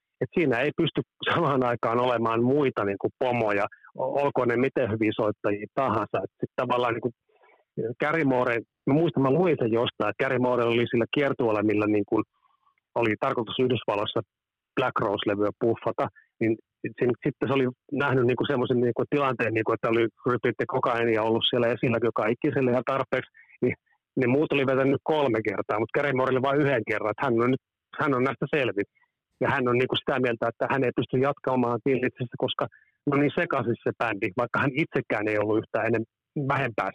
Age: 30-49